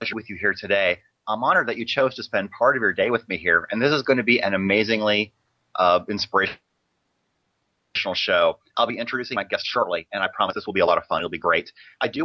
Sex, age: male, 30-49